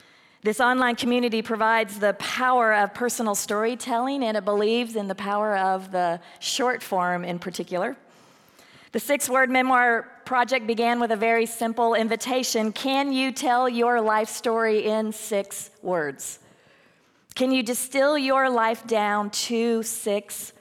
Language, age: English, 40-59